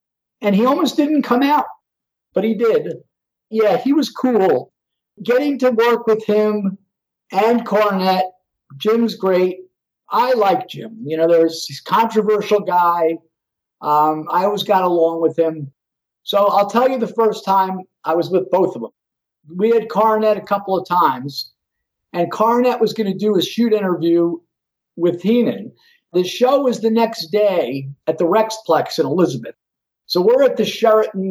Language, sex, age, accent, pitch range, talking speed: English, male, 50-69, American, 170-220 Hz, 165 wpm